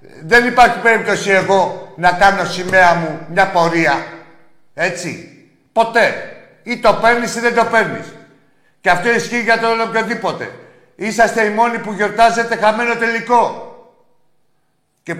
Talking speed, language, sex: 130 wpm, Greek, male